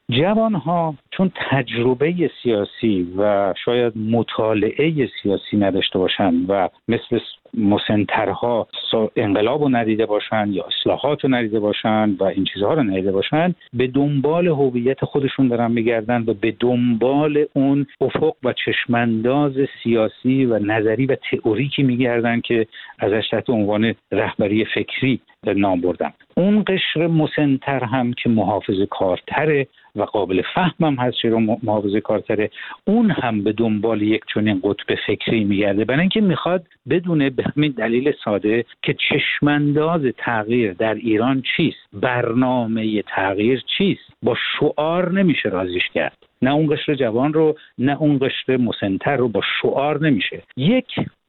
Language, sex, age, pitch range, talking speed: Persian, male, 50-69, 110-150 Hz, 135 wpm